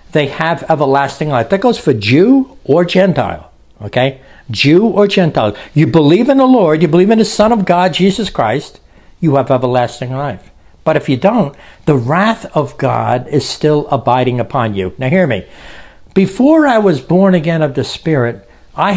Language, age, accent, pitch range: English, 60-79, American, 135-185 Hz